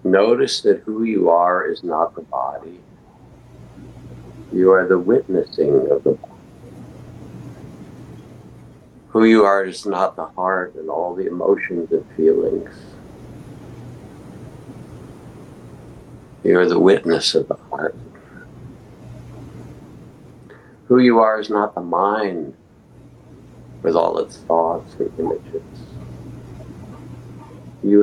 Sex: male